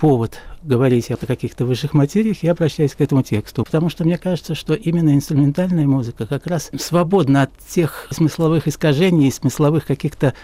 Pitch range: 130-165 Hz